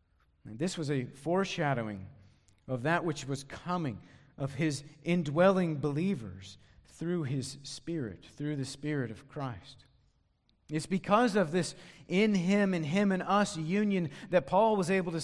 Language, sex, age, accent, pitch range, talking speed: English, male, 40-59, American, 105-170 Hz, 145 wpm